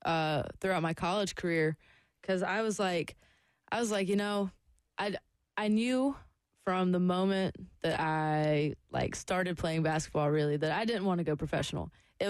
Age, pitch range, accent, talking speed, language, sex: 20-39, 160-195 Hz, American, 170 wpm, English, female